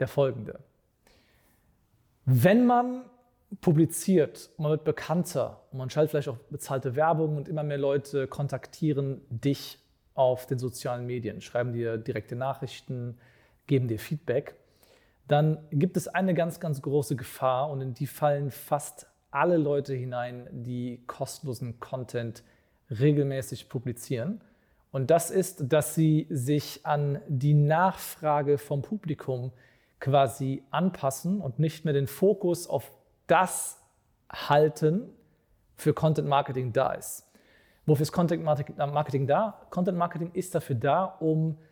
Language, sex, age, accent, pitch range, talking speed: German, male, 40-59, German, 130-160 Hz, 125 wpm